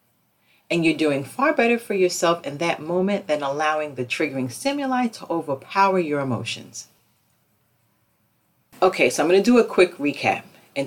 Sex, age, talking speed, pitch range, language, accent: female, 40-59, 160 wpm, 150-215 Hz, English, American